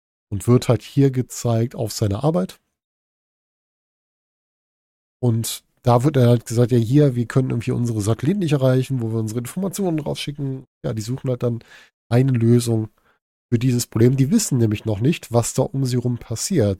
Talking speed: 175 wpm